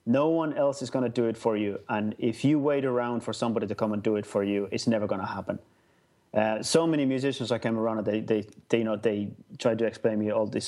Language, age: English, 30-49